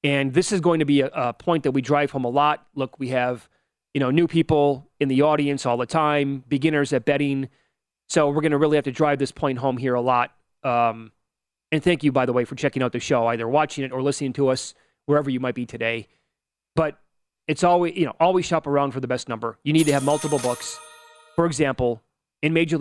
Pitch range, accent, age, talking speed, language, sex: 125-150 Hz, American, 30-49, 240 wpm, English, male